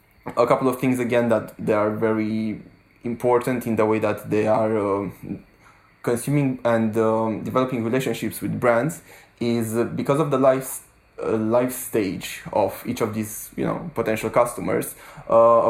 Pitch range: 110-120 Hz